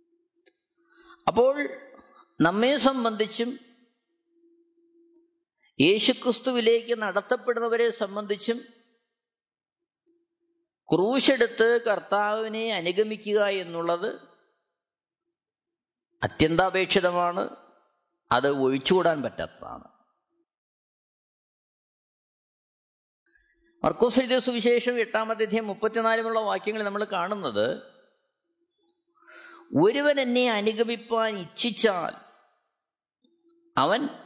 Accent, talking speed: native, 45 wpm